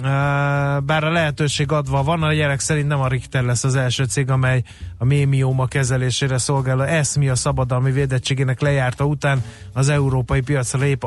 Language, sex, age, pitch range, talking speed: Hungarian, male, 30-49, 125-150 Hz, 170 wpm